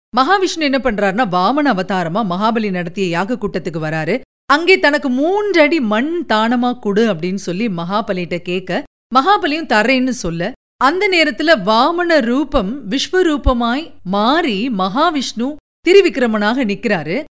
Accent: native